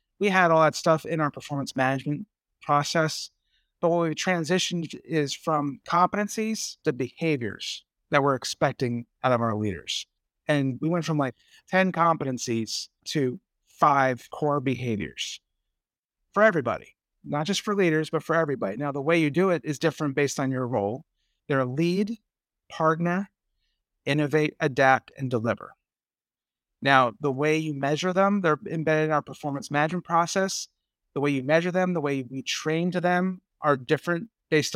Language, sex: English, male